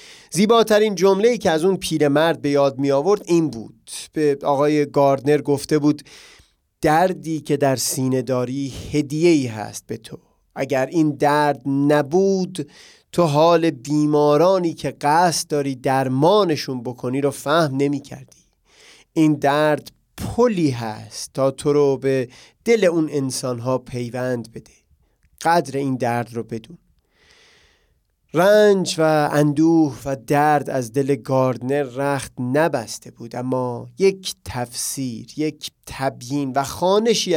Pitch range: 130-160 Hz